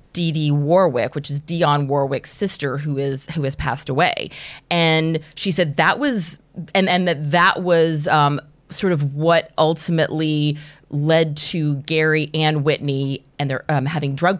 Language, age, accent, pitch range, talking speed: English, 30-49, American, 145-180 Hz, 160 wpm